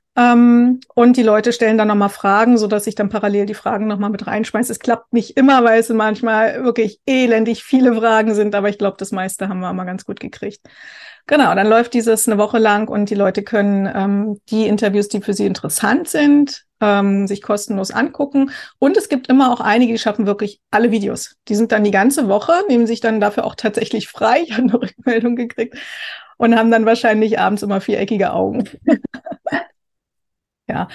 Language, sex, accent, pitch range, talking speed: German, female, German, 210-240 Hz, 200 wpm